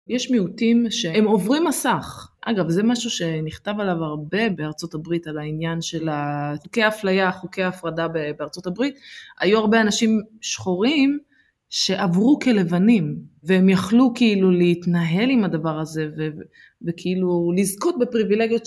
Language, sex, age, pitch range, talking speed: Hebrew, female, 20-39, 165-215 Hz, 125 wpm